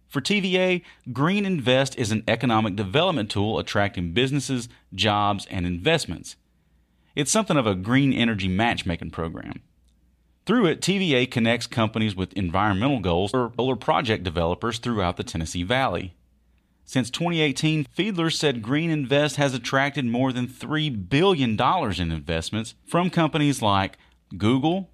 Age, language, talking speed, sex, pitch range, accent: 30-49, English, 135 wpm, male, 95-140 Hz, American